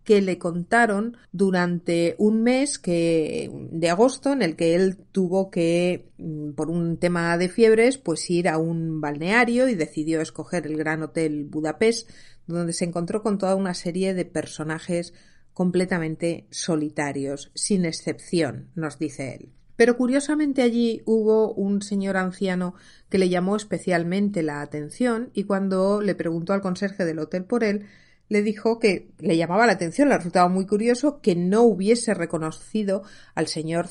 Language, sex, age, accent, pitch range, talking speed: Spanish, female, 40-59, Spanish, 165-215 Hz, 155 wpm